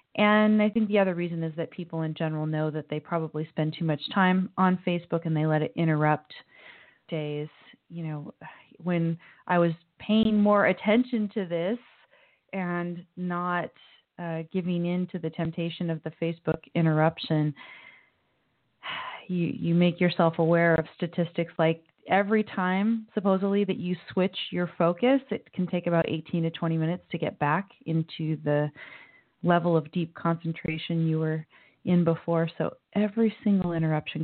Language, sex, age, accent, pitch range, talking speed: English, female, 30-49, American, 160-195 Hz, 160 wpm